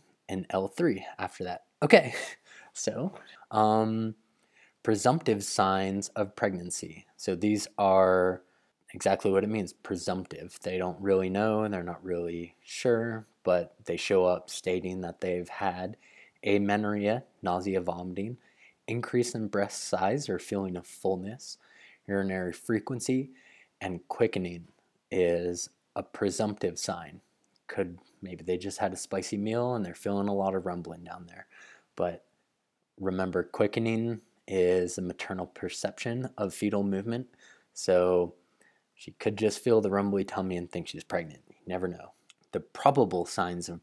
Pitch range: 90-110 Hz